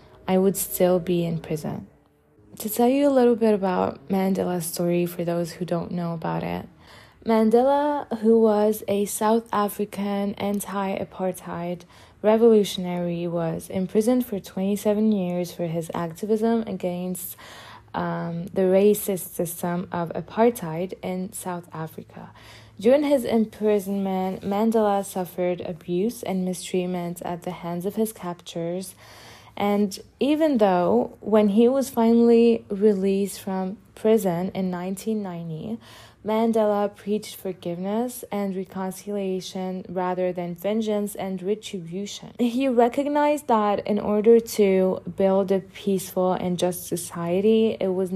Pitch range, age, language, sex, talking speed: 180-215 Hz, 20-39, English, female, 120 wpm